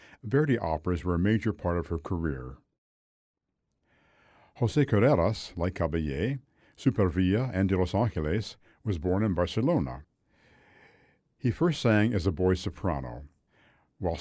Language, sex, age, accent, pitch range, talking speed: English, male, 60-79, American, 85-110 Hz, 125 wpm